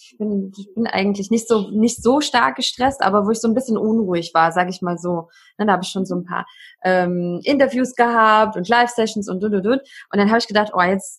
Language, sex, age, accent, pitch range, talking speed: German, female, 20-39, German, 200-250 Hz, 235 wpm